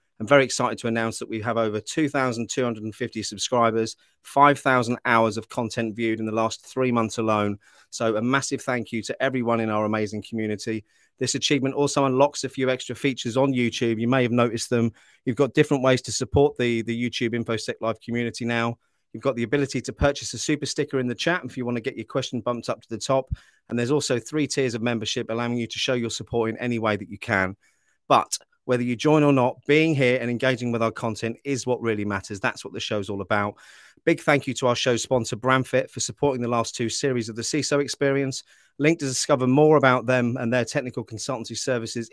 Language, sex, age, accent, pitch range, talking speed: English, male, 30-49, British, 115-135 Hz, 220 wpm